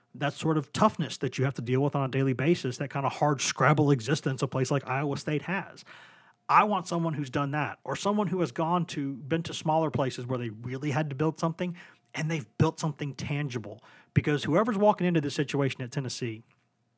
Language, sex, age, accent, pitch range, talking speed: English, male, 30-49, American, 130-160 Hz, 220 wpm